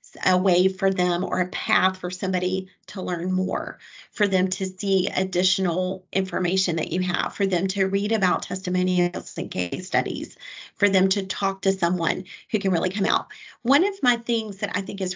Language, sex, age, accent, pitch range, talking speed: English, female, 40-59, American, 185-225 Hz, 195 wpm